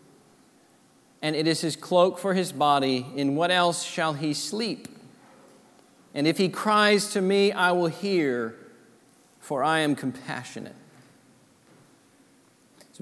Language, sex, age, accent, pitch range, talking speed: English, male, 40-59, American, 160-195 Hz, 130 wpm